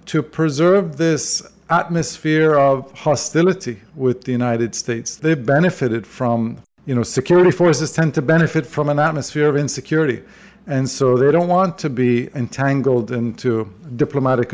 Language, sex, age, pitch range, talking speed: English, male, 50-69, 125-155 Hz, 145 wpm